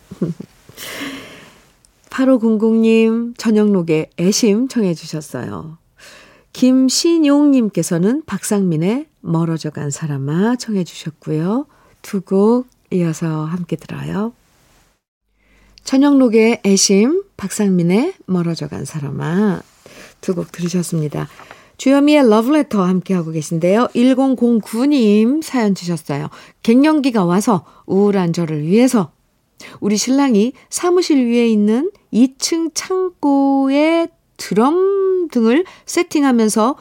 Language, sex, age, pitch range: Korean, female, 50-69, 180-255 Hz